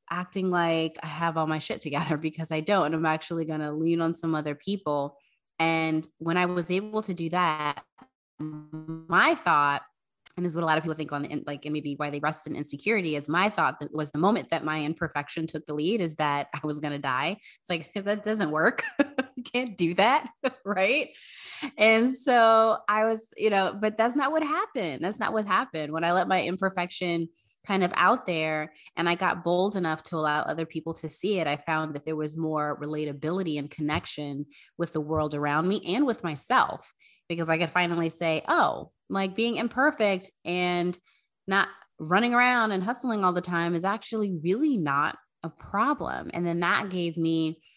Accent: American